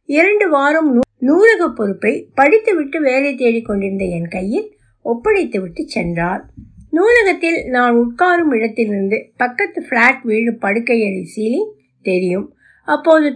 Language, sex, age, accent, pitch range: Tamil, female, 60-79, native, 210-310 Hz